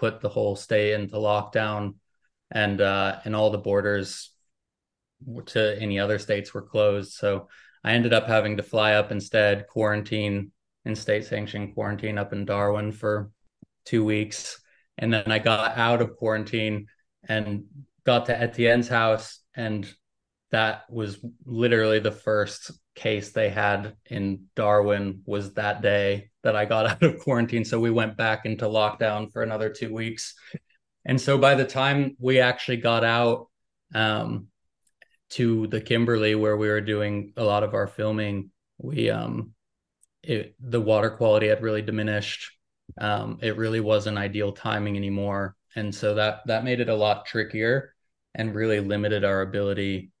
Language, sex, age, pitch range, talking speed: English, male, 20-39, 105-115 Hz, 155 wpm